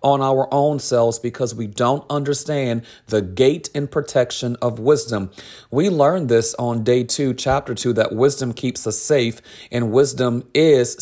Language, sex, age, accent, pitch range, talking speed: English, male, 40-59, American, 120-155 Hz, 165 wpm